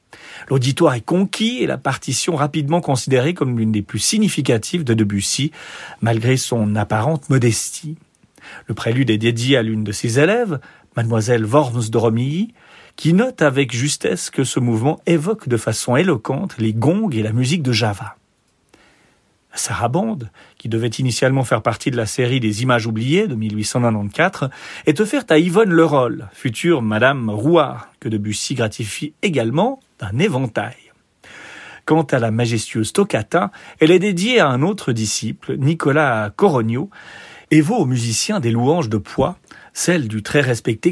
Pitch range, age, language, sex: 115-165 Hz, 40-59, French, male